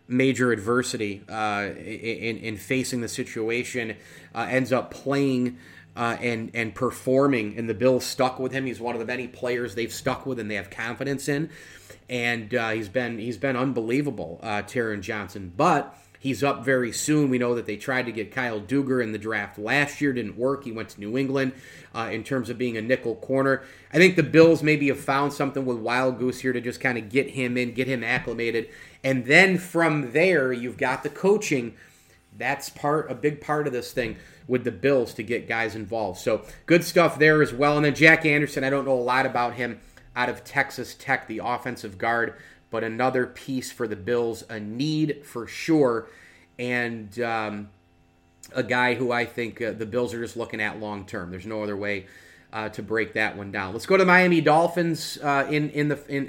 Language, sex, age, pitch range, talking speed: English, male, 30-49, 115-140 Hz, 210 wpm